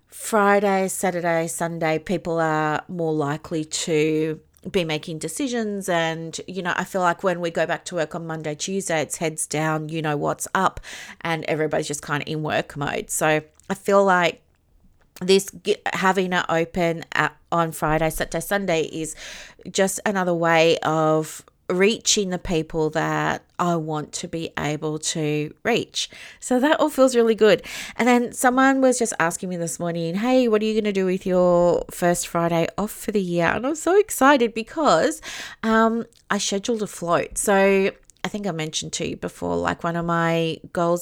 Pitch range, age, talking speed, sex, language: 160-200 Hz, 30-49, 180 wpm, female, English